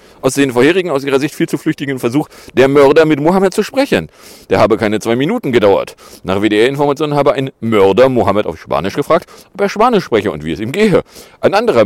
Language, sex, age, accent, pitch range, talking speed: German, male, 40-59, German, 125-195 Hz, 210 wpm